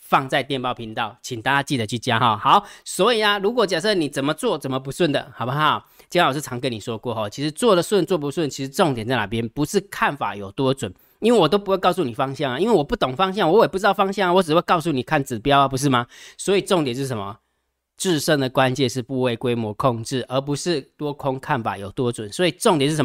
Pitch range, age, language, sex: 125-175 Hz, 20-39, Chinese, male